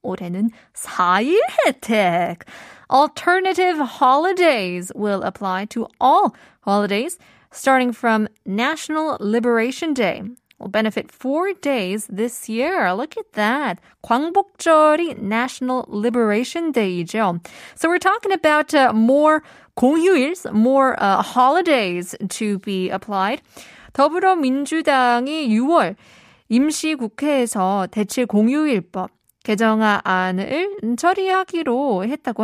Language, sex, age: Korean, female, 20-39